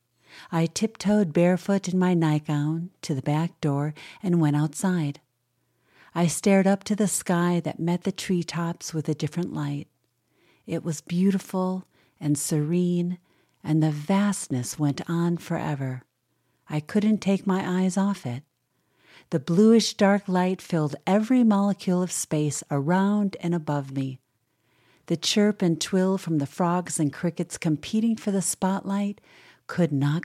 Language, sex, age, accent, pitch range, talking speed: English, female, 50-69, American, 150-190 Hz, 145 wpm